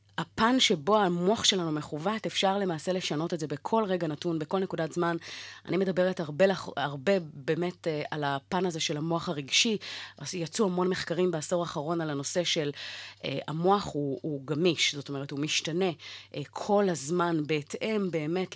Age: 30-49